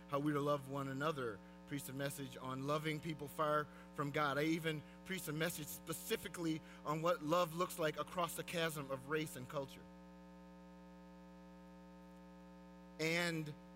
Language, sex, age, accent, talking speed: English, male, 30-49, American, 150 wpm